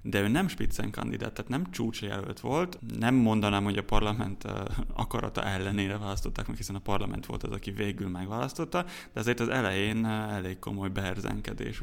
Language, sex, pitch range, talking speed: Hungarian, male, 100-115 Hz, 160 wpm